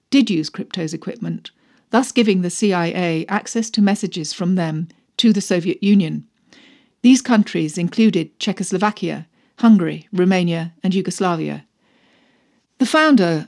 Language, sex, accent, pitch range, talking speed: English, female, British, 175-240 Hz, 120 wpm